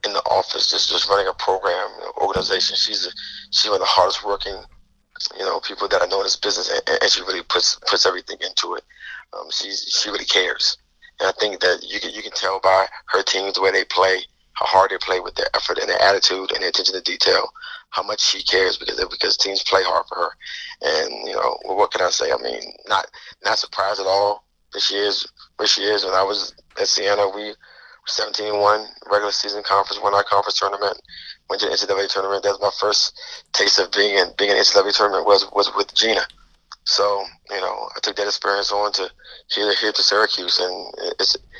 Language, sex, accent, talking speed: English, male, American, 220 wpm